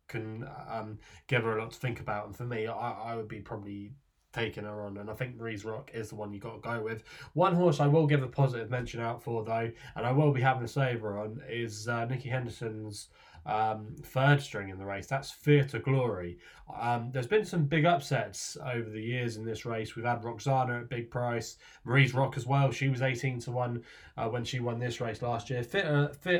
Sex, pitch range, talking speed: male, 110-140 Hz, 230 wpm